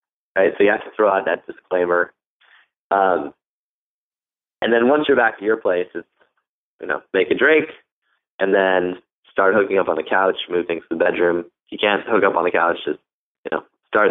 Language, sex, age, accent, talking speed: English, male, 20-39, American, 205 wpm